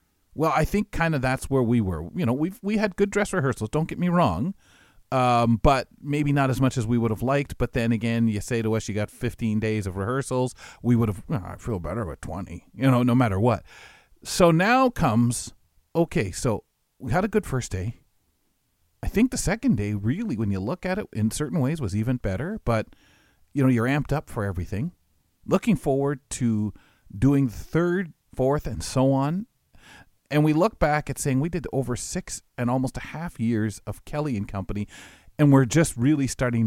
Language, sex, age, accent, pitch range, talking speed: English, male, 40-59, American, 105-150 Hz, 215 wpm